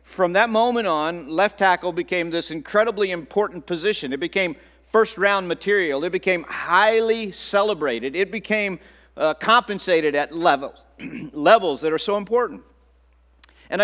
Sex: male